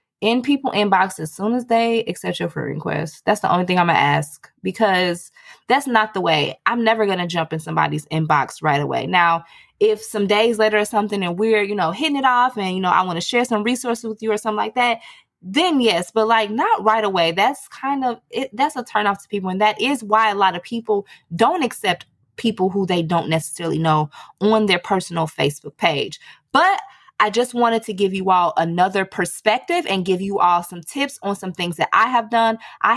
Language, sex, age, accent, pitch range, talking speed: English, female, 20-39, American, 180-240 Hz, 225 wpm